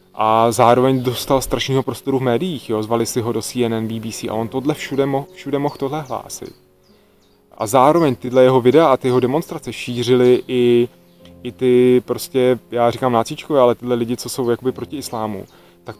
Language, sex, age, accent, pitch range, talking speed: Czech, male, 20-39, native, 115-130 Hz, 180 wpm